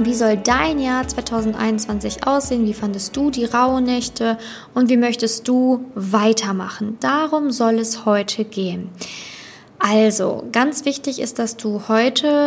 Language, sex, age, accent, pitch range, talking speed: German, female, 20-39, German, 220-255 Hz, 140 wpm